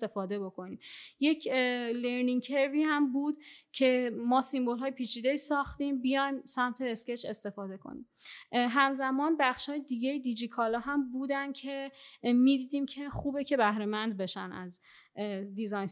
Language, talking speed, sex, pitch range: Persian, 130 wpm, female, 225-275 Hz